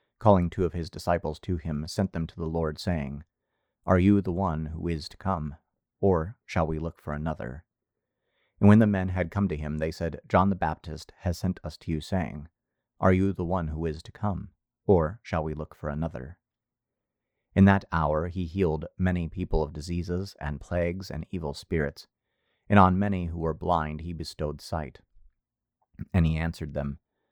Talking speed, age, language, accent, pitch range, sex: 190 wpm, 30-49, English, American, 75-95 Hz, male